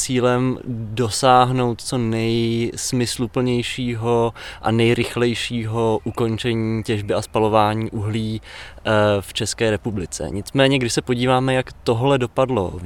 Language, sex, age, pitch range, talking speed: Czech, male, 20-39, 105-120 Hz, 105 wpm